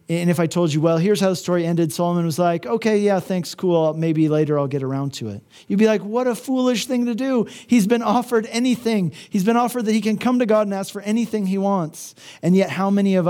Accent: American